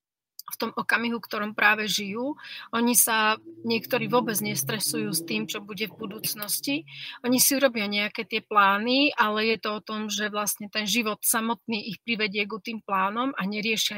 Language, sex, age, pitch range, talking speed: Slovak, female, 30-49, 200-230 Hz, 170 wpm